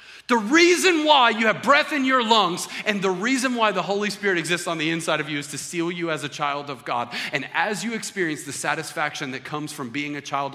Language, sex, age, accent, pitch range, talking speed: English, male, 30-49, American, 125-165 Hz, 245 wpm